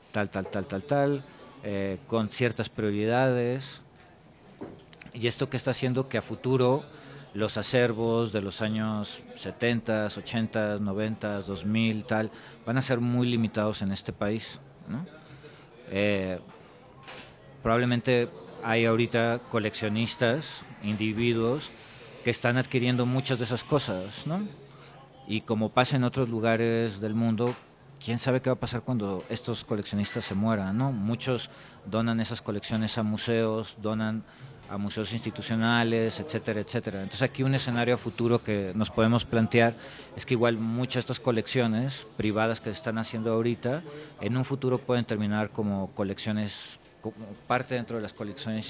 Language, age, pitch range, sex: Spanish, 40-59, 105-125 Hz, male